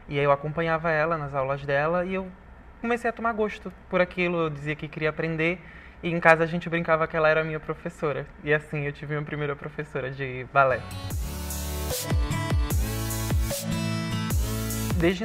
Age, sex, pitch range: 20-39, male, 140-160 Hz